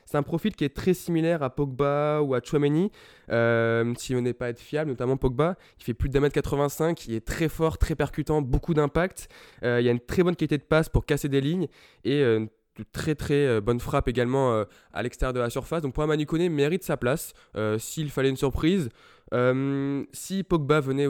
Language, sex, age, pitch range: French, male, 20-39, 120-150 Hz